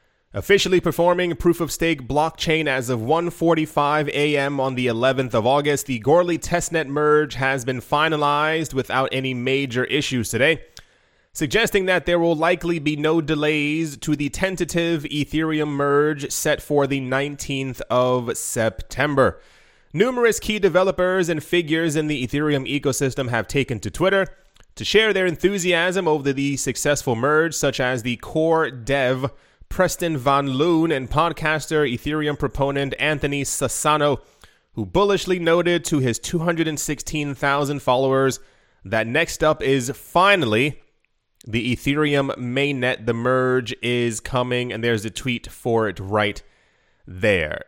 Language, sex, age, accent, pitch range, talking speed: English, male, 20-39, American, 130-160 Hz, 135 wpm